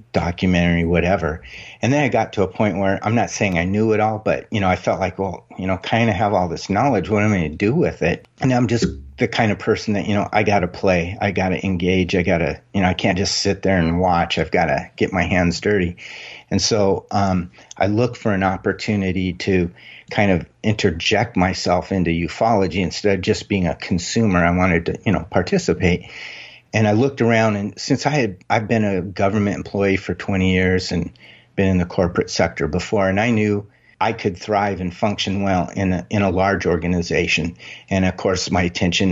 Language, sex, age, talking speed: English, male, 40-59, 225 wpm